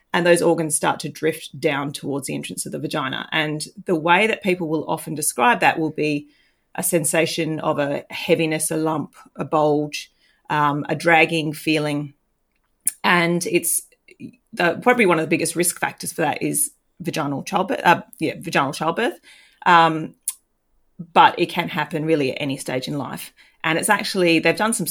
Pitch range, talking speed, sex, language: 150-175 Hz, 175 wpm, female, English